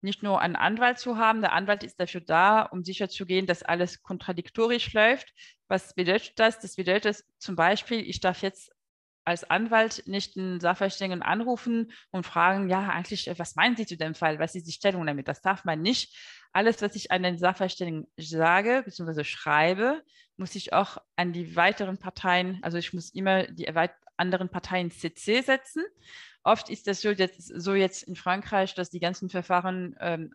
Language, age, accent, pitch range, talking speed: German, 20-39, German, 175-210 Hz, 180 wpm